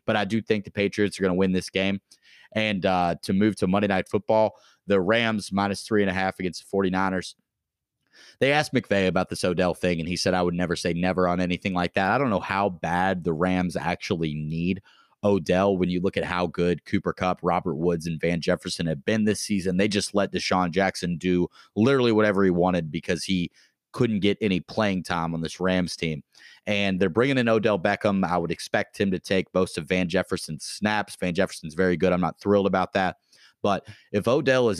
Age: 30-49